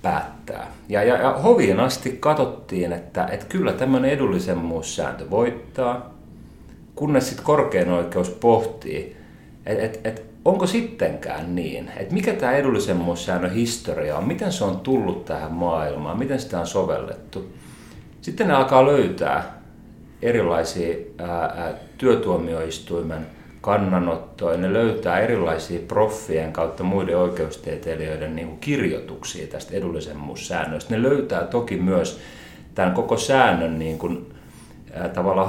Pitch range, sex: 80-120 Hz, male